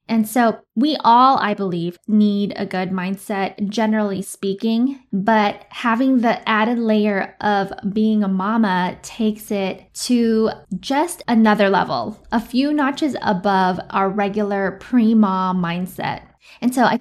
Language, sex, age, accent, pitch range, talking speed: English, female, 10-29, American, 200-240 Hz, 135 wpm